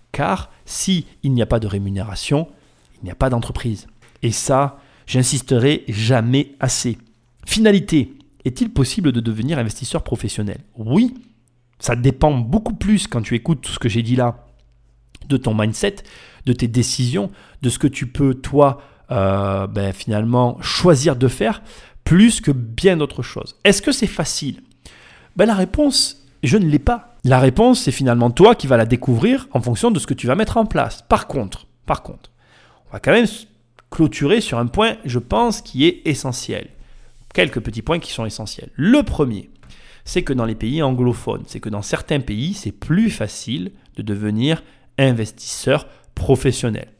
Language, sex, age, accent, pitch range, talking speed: French, male, 40-59, French, 115-160 Hz, 170 wpm